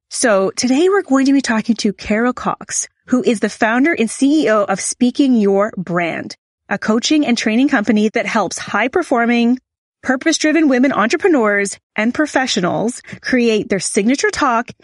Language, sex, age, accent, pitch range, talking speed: English, female, 30-49, American, 200-280 Hz, 150 wpm